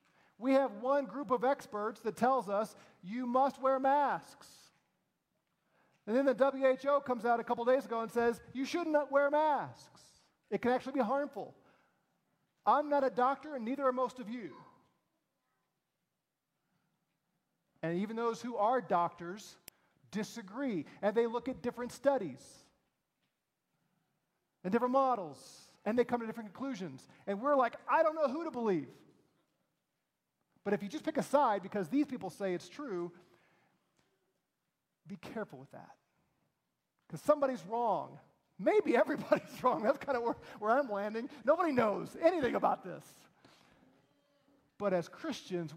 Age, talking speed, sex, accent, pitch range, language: 40-59, 150 wpm, male, American, 180-265 Hz, English